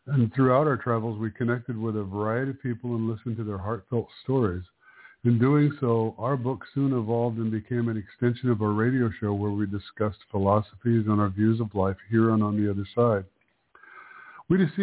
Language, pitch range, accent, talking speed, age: English, 105-125 Hz, American, 195 wpm, 50-69